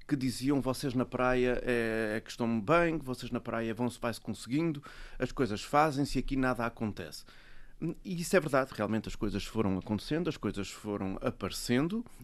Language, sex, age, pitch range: Portuguese, male, 30-49, 115-150 Hz